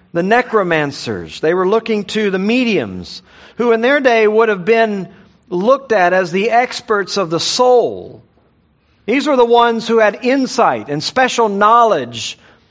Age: 50-69